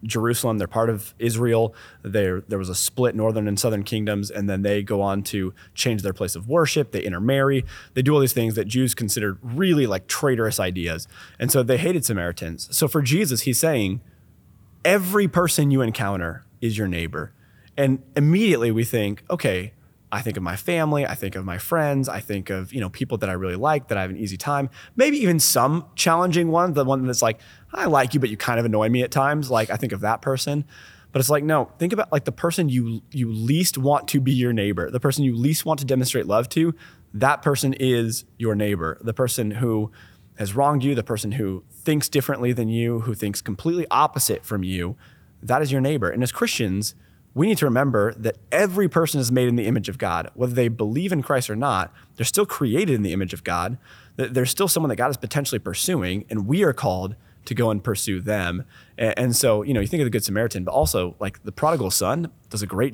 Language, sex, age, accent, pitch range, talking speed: English, male, 20-39, American, 100-140 Hz, 225 wpm